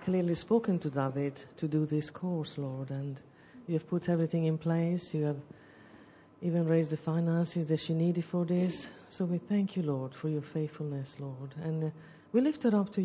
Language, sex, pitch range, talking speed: English, female, 140-170 Hz, 195 wpm